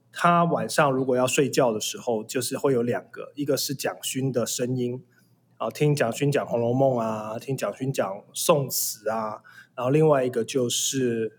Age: 20-39